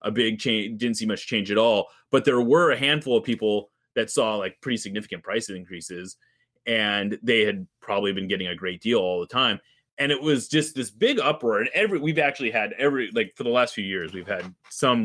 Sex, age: male, 30-49